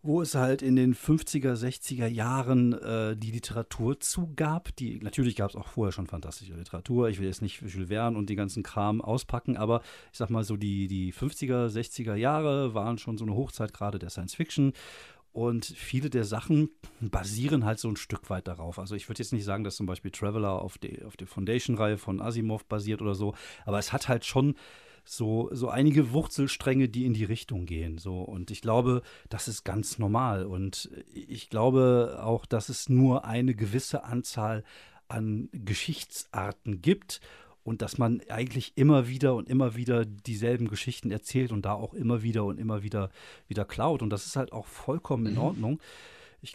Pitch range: 105-130 Hz